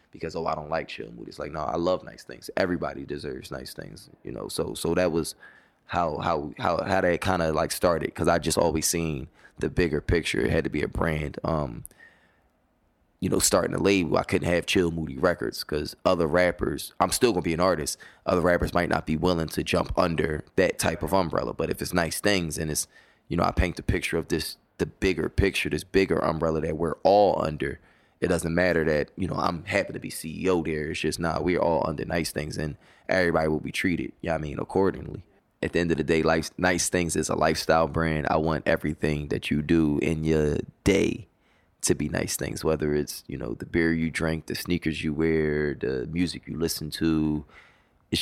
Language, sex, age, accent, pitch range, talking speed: English, male, 20-39, American, 75-85 Hz, 225 wpm